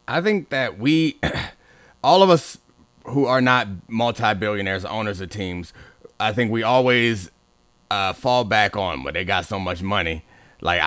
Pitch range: 110-145 Hz